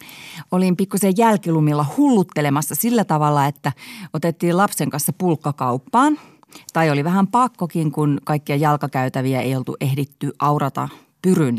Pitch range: 135-180 Hz